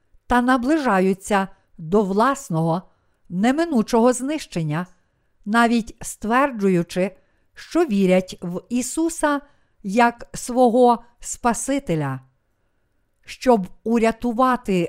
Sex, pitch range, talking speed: female, 180-245 Hz, 70 wpm